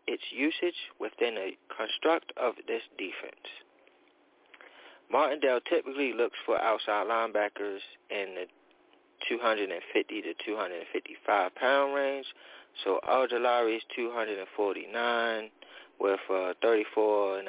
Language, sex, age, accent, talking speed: English, male, 30-49, American, 80 wpm